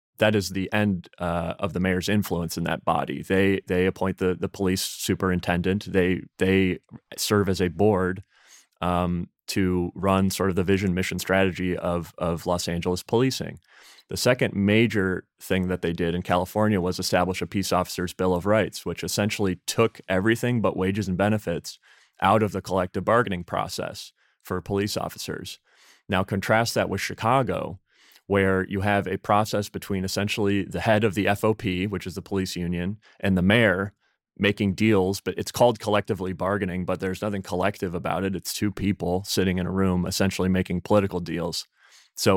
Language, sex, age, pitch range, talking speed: English, male, 30-49, 90-105 Hz, 175 wpm